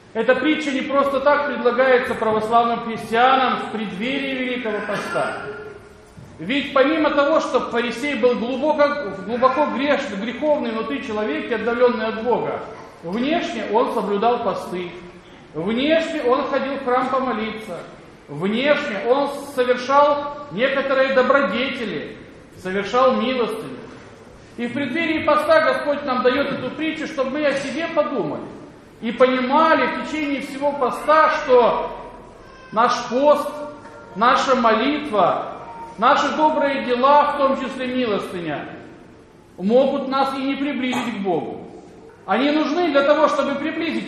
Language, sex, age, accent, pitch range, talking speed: Russian, male, 40-59, native, 235-290 Hz, 125 wpm